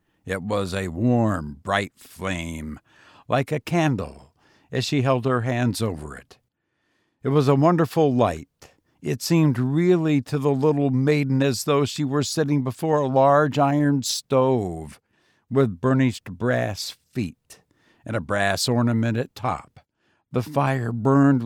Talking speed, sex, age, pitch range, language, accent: 145 wpm, male, 60-79, 105-135 Hz, English, American